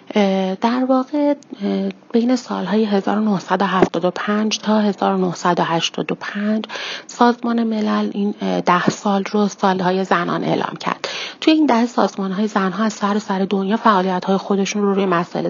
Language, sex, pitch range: Persian, female, 185-220 Hz